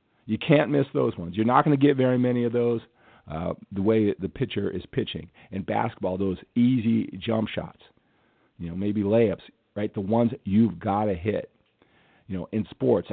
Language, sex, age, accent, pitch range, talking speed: English, male, 50-69, American, 95-120 Hz, 195 wpm